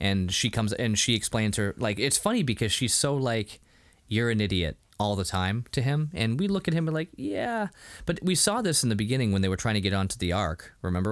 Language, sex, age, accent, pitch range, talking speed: English, male, 20-39, American, 90-115 Hz, 255 wpm